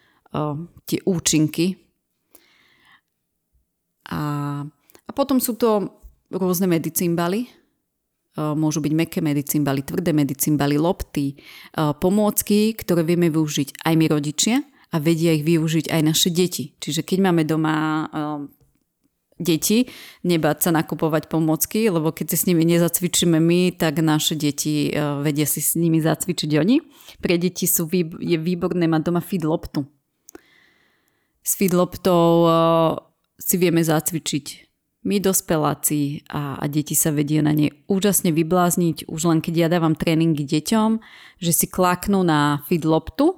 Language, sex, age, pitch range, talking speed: Slovak, female, 30-49, 155-180 Hz, 135 wpm